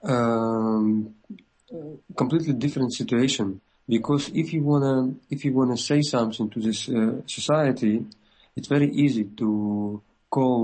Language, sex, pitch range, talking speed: English, male, 110-130 Hz, 125 wpm